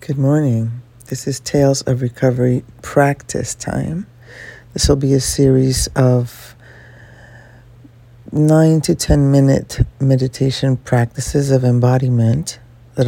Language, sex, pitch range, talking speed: English, female, 120-135 Hz, 110 wpm